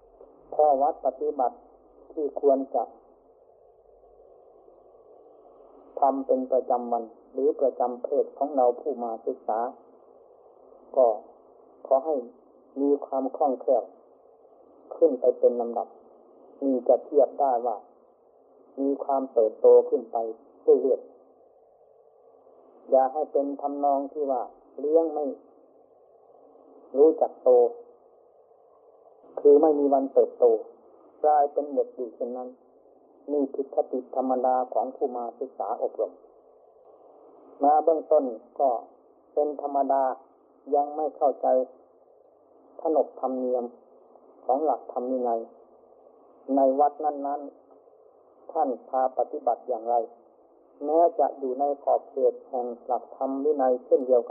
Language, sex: Thai, male